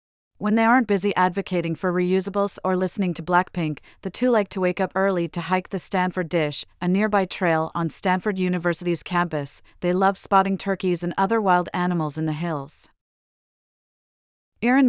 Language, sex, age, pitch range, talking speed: English, female, 30-49, 170-200 Hz, 170 wpm